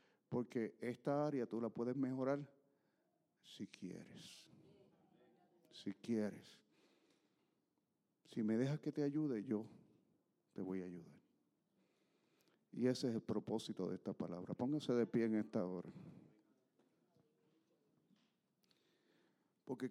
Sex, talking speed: male, 110 wpm